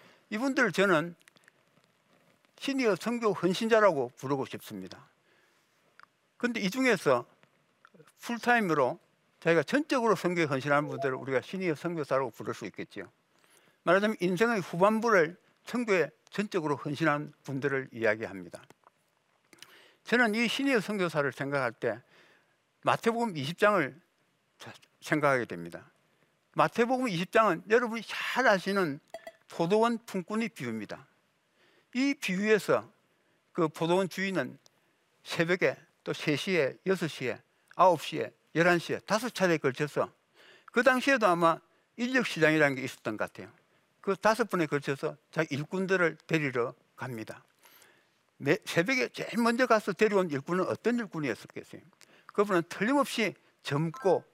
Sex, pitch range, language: male, 155-225 Hz, Korean